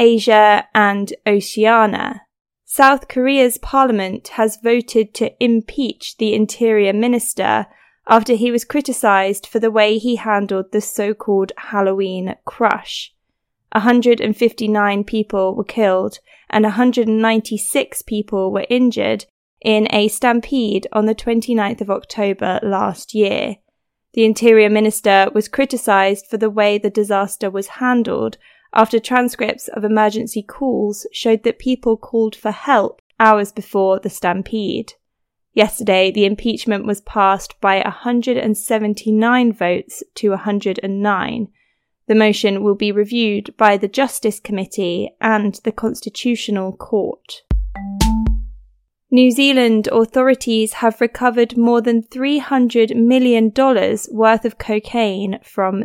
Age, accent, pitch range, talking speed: 20-39, British, 205-235 Hz, 115 wpm